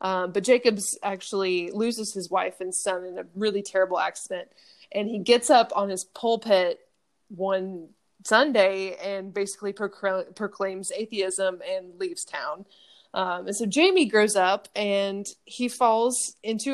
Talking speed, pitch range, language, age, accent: 145 wpm, 190-245 Hz, English, 20-39, American